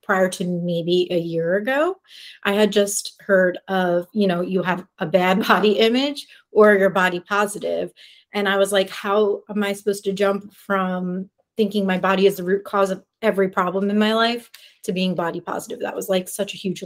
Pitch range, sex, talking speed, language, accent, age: 180-210 Hz, female, 205 wpm, English, American, 30-49